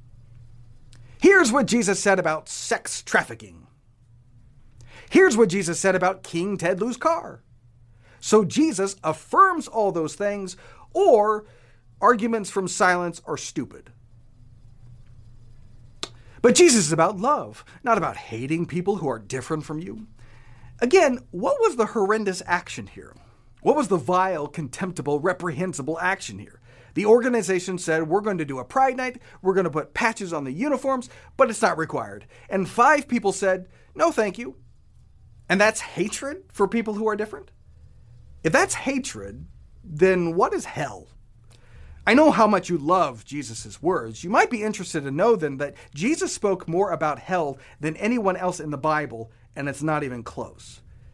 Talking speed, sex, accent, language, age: 155 wpm, male, American, English, 40-59